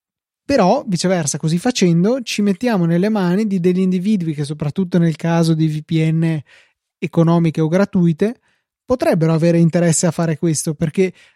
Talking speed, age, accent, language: 145 wpm, 20-39, native, Italian